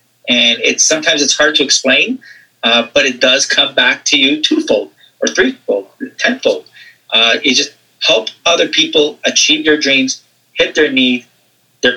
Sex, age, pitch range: male, 30-49, 125-165 Hz